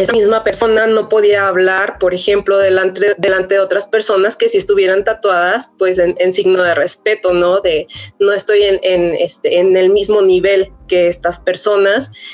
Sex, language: female, Spanish